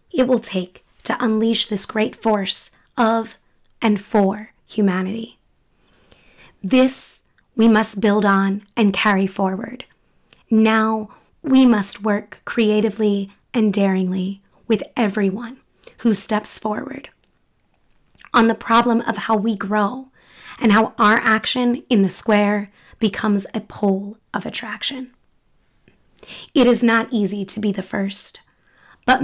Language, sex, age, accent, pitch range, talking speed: English, female, 20-39, American, 205-235 Hz, 125 wpm